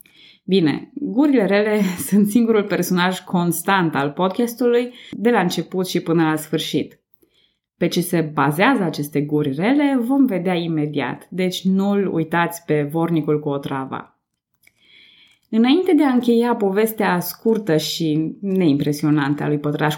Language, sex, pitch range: Romanian, female, 160-225 Hz